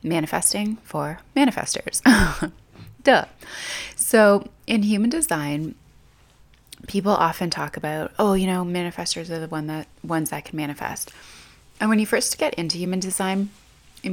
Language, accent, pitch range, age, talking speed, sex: English, American, 160-210 Hz, 20-39, 140 wpm, female